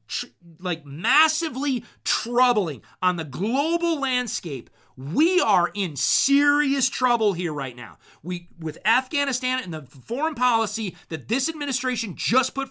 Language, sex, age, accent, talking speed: English, male, 30-49, American, 130 wpm